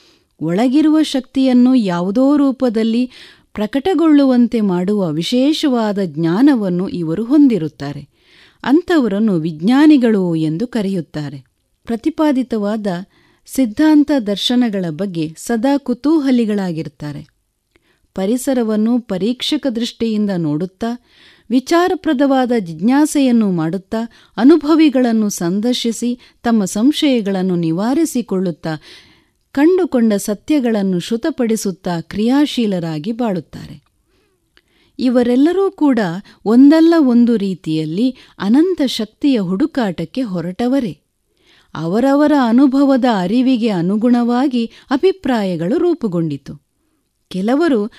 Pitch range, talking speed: 190-270 Hz, 65 wpm